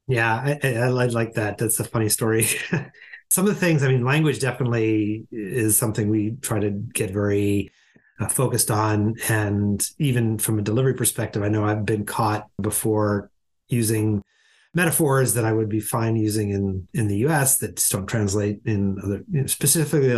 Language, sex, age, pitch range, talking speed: English, male, 30-49, 110-135 Hz, 170 wpm